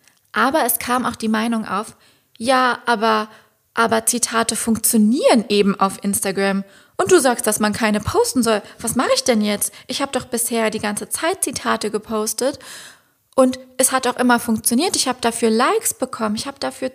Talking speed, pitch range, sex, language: 180 wpm, 210-250 Hz, female, German